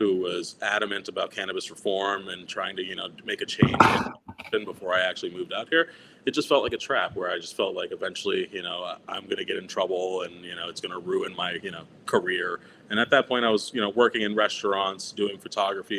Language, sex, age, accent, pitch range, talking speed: English, male, 30-49, American, 100-125 Hz, 240 wpm